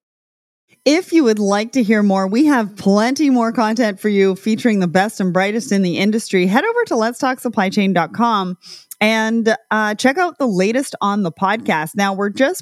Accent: American